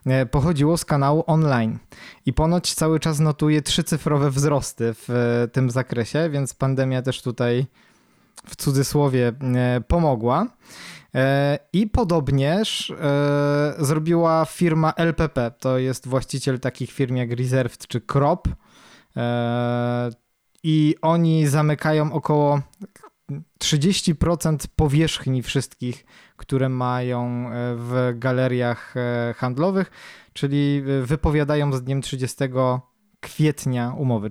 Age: 20-39